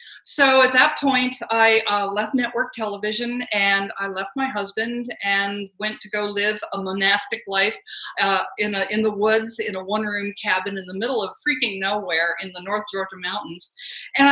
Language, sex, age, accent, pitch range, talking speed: English, female, 50-69, American, 200-265 Hz, 185 wpm